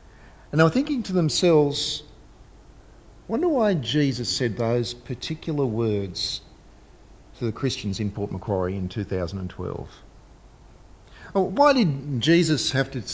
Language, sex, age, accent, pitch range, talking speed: English, male, 50-69, Australian, 110-150 Hz, 115 wpm